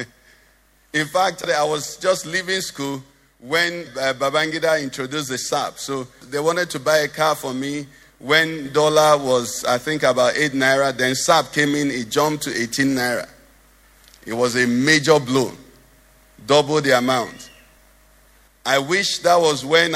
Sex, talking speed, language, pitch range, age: male, 155 wpm, English, 135-160 Hz, 50-69